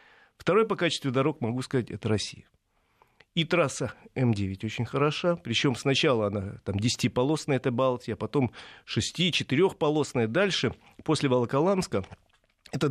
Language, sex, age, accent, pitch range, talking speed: Russian, male, 40-59, native, 110-150 Hz, 120 wpm